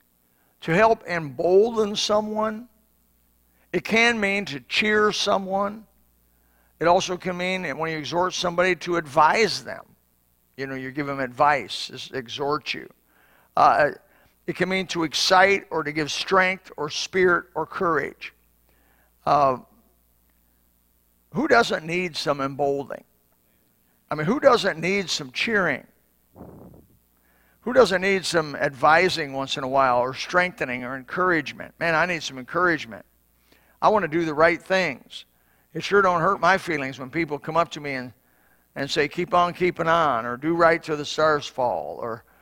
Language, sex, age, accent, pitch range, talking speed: English, male, 50-69, American, 130-180 Hz, 155 wpm